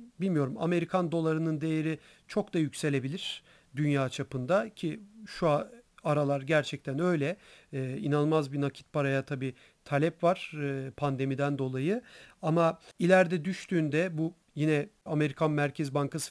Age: 40-59